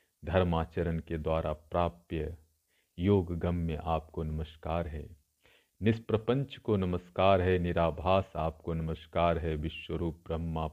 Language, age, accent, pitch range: Hindi, 50-69, native, 80-95 Hz